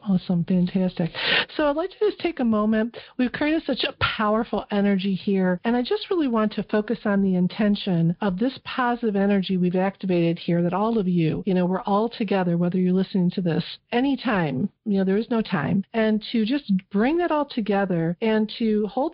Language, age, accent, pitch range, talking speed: English, 50-69, American, 180-220 Hz, 205 wpm